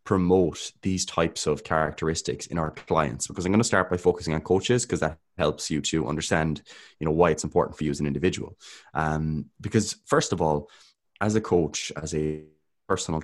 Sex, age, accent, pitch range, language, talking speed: male, 20-39, Irish, 80-100 Hz, English, 200 wpm